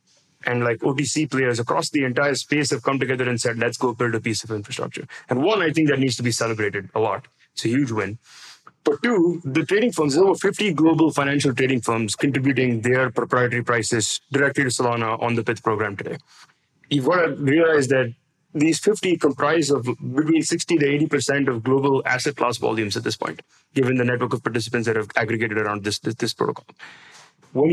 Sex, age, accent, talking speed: male, 30-49, Indian, 205 wpm